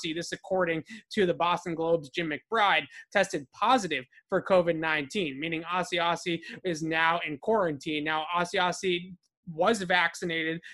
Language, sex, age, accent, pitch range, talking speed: English, male, 20-39, American, 165-190 Hz, 125 wpm